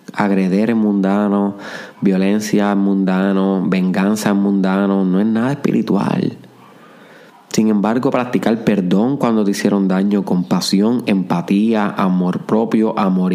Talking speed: 110 wpm